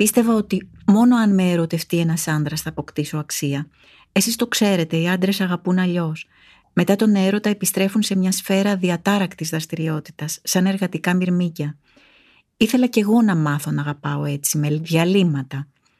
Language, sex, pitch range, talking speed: Greek, female, 155-195 Hz, 150 wpm